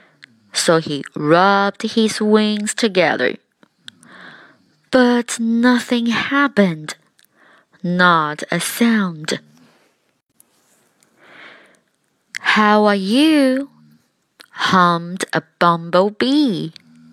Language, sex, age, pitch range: Chinese, female, 20-39, 160-225 Hz